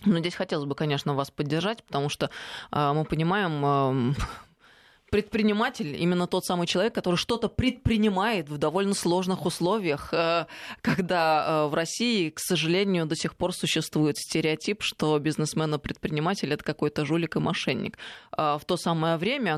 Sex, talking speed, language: female, 155 wpm, Russian